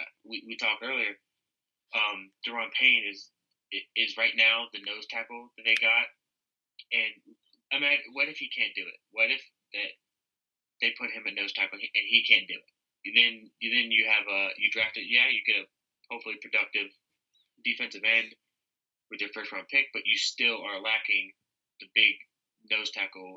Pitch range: 95-110 Hz